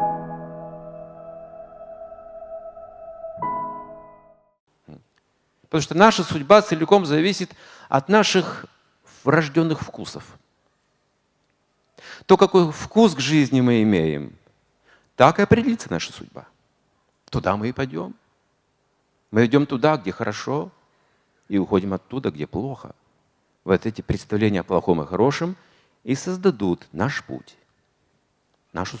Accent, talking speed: native, 100 wpm